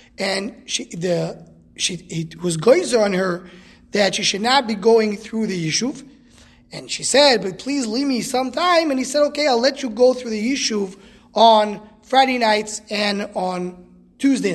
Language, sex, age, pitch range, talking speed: English, male, 20-39, 190-255 Hz, 180 wpm